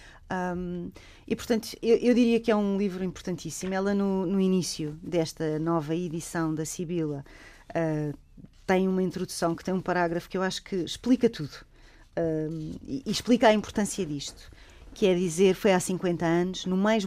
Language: Portuguese